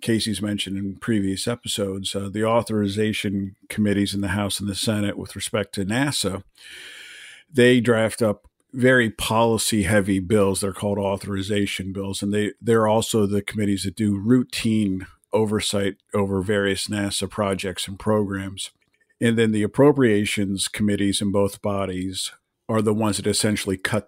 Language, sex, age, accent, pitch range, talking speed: English, male, 50-69, American, 100-110 Hz, 150 wpm